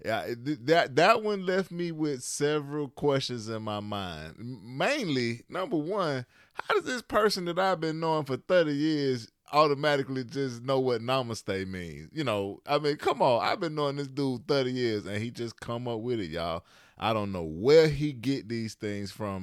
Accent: American